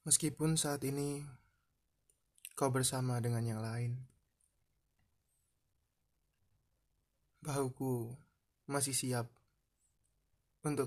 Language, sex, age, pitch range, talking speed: Indonesian, male, 20-39, 110-135 Hz, 65 wpm